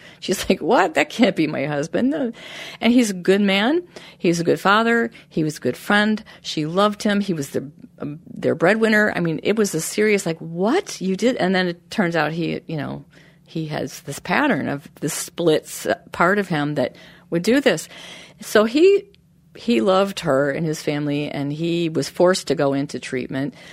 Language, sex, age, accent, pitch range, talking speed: English, female, 50-69, American, 150-190 Hz, 200 wpm